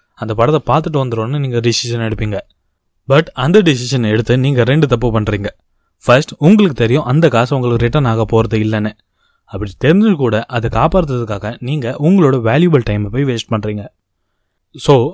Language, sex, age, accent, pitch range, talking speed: Tamil, male, 20-39, native, 110-145 Hz, 150 wpm